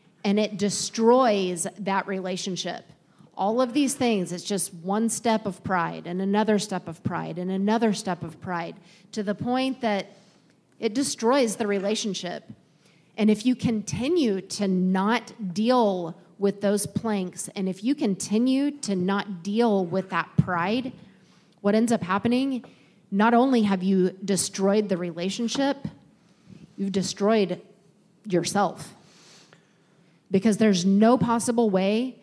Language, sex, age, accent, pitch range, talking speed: English, female, 30-49, American, 185-225 Hz, 135 wpm